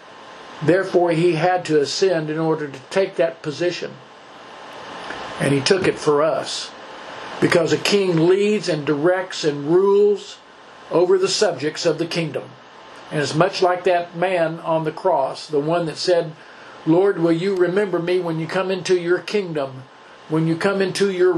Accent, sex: American, male